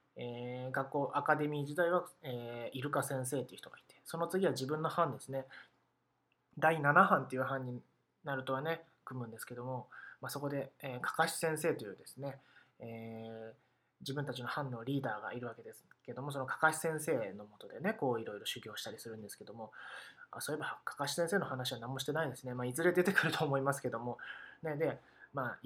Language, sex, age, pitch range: Japanese, male, 20-39, 125-175 Hz